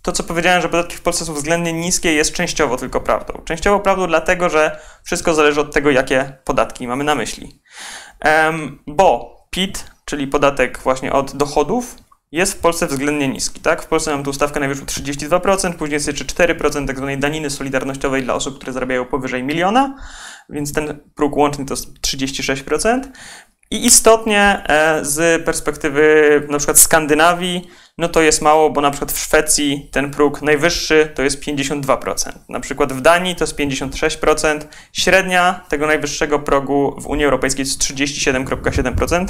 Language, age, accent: Polish, 20-39, native